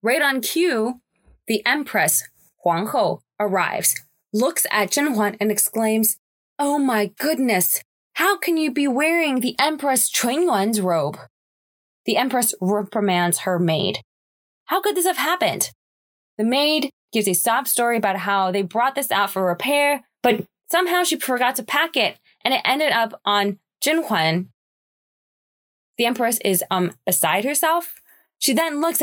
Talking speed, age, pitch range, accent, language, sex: 155 wpm, 20-39, 190-275 Hz, American, English, female